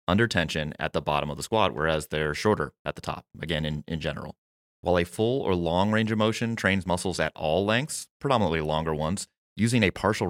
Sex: male